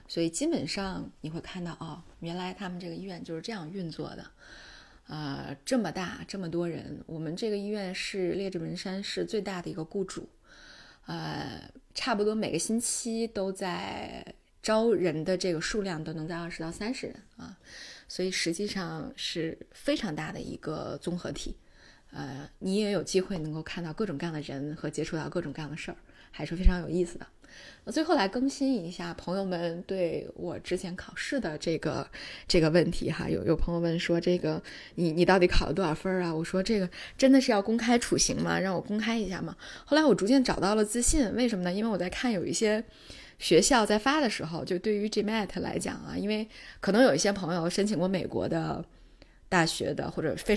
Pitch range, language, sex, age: 170-210 Hz, Chinese, female, 20-39